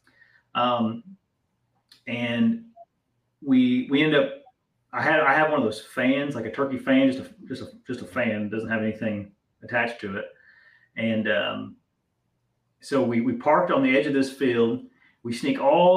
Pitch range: 115-155 Hz